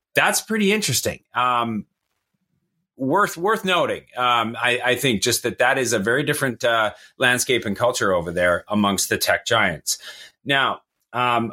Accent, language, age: American, English, 30-49